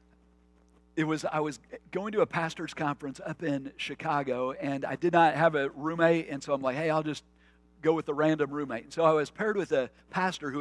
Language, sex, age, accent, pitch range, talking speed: English, male, 50-69, American, 135-175 Hz, 225 wpm